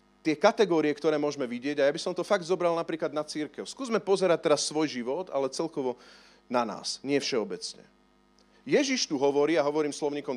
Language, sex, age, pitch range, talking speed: Slovak, male, 40-59, 130-180 Hz, 185 wpm